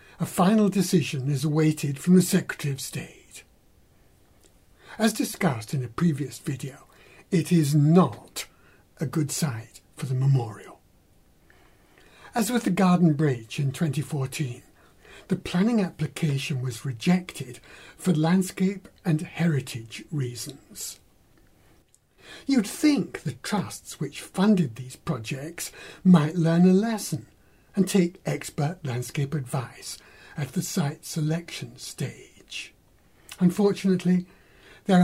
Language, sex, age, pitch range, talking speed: English, male, 60-79, 135-180 Hz, 115 wpm